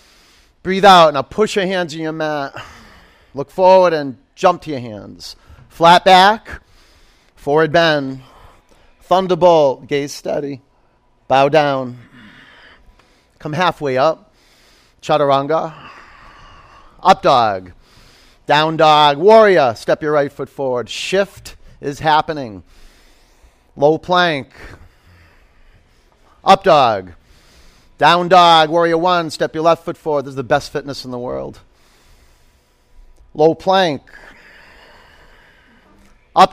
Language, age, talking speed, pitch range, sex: English, 40-59, 110 wpm, 120-170 Hz, male